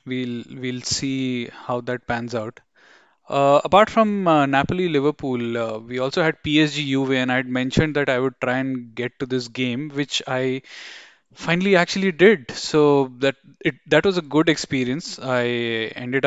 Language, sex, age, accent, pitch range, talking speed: English, male, 10-29, Indian, 125-160 Hz, 165 wpm